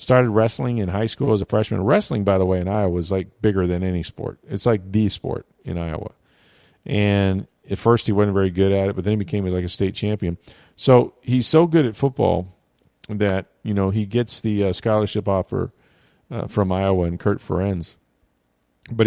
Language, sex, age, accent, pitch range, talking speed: English, male, 40-59, American, 95-125 Hz, 205 wpm